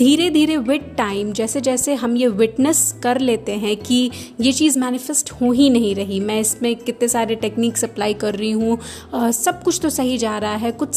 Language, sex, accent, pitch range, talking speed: Hindi, female, native, 225-285 Hz, 210 wpm